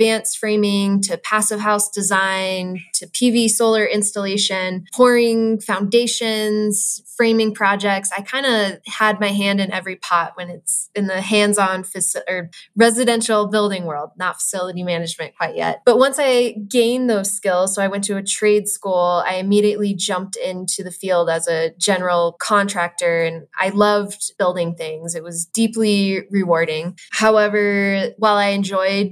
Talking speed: 150 wpm